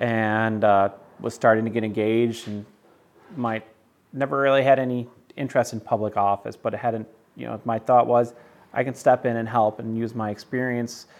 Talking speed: 190 wpm